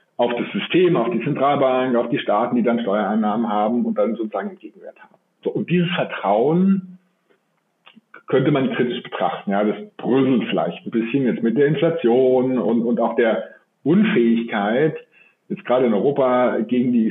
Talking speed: 165 wpm